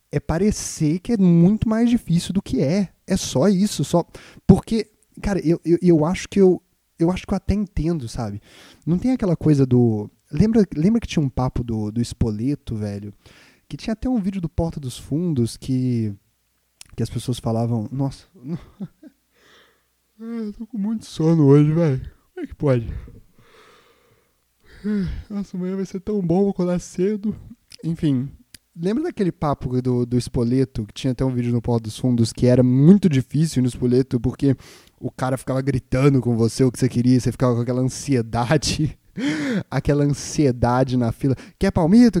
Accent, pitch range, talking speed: Brazilian, 125-195 Hz, 175 wpm